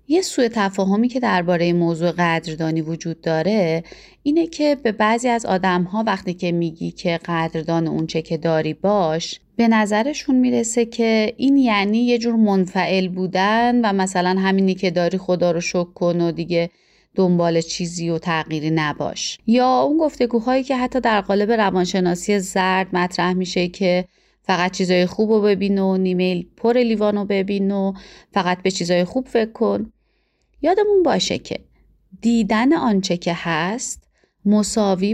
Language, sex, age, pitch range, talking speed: Persian, female, 30-49, 175-230 Hz, 150 wpm